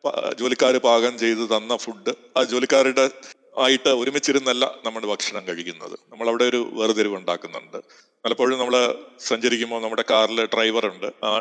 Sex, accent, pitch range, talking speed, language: male, native, 120-140 Hz, 125 wpm, Malayalam